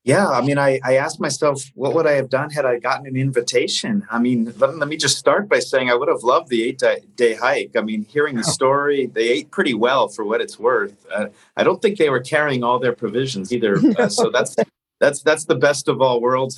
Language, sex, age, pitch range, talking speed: English, male, 40-59, 125-180 Hz, 245 wpm